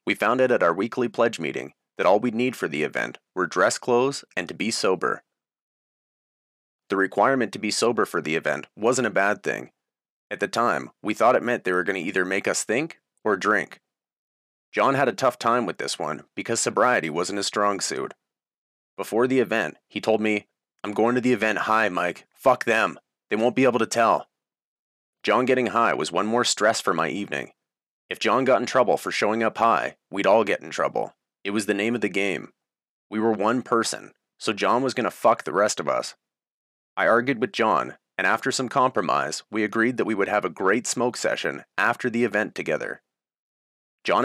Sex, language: male, English